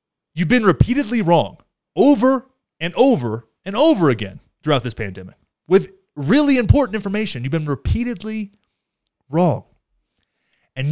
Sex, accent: male, American